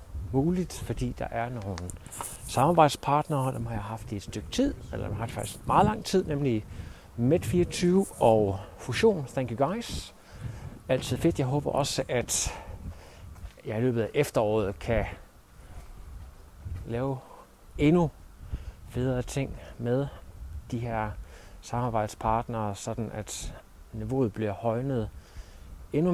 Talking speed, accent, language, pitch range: 120 wpm, native, Danish, 100-135 Hz